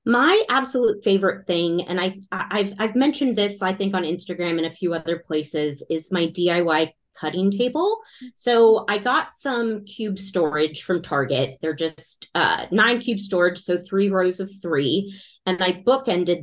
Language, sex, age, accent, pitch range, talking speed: English, female, 30-49, American, 160-205 Hz, 165 wpm